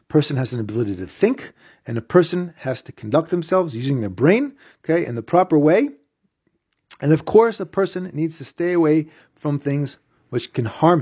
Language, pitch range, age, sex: English, 120-165 Hz, 40-59, male